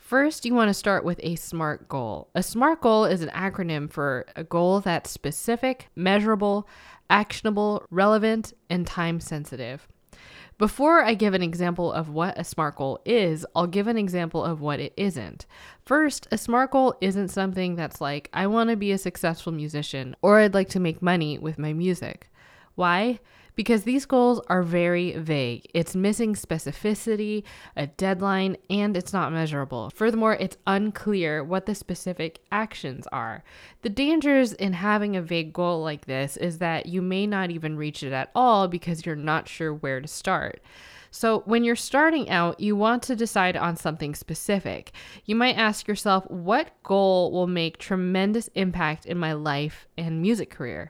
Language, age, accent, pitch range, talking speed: English, 20-39, American, 160-215 Hz, 170 wpm